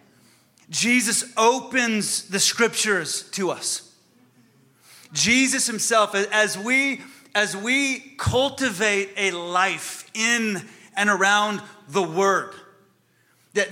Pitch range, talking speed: 180-230 Hz, 90 wpm